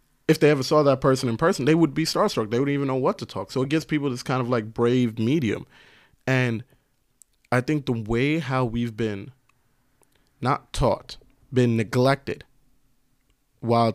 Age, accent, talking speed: 20-39, American, 180 wpm